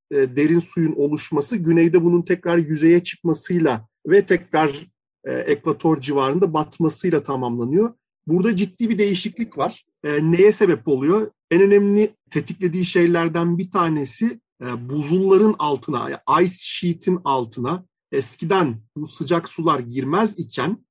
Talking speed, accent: 125 wpm, native